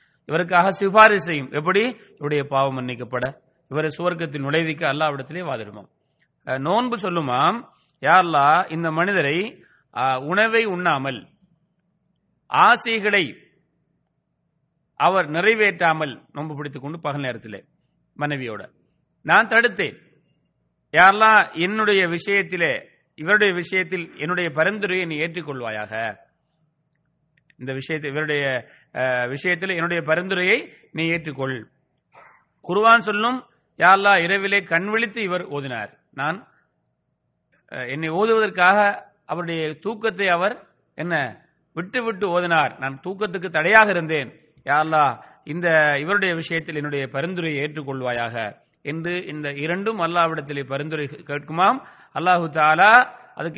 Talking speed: 80 wpm